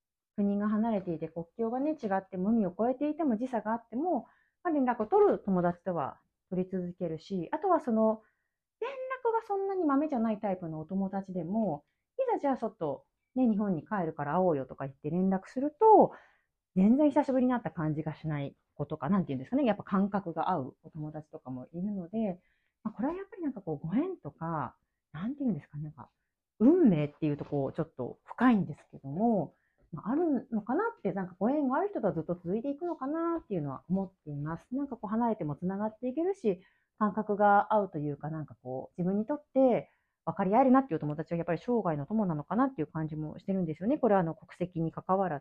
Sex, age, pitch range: female, 30-49, 165-260 Hz